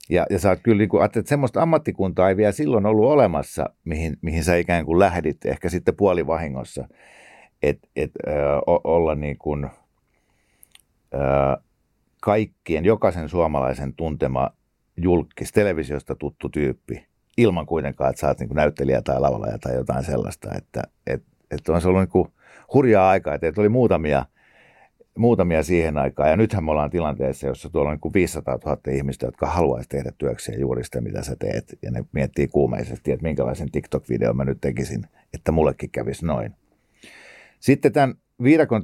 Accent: native